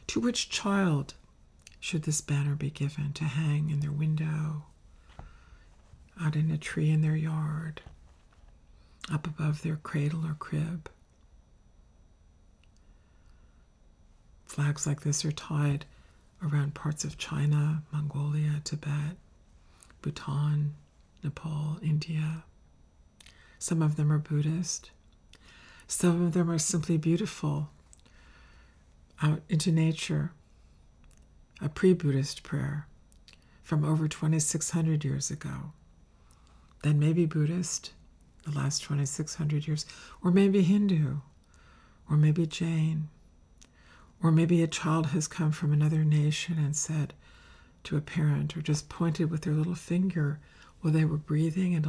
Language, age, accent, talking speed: English, 50-69, American, 115 wpm